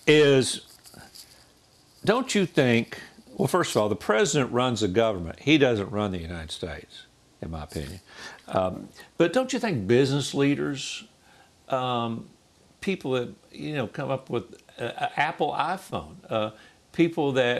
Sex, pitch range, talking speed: male, 105-150 Hz, 145 wpm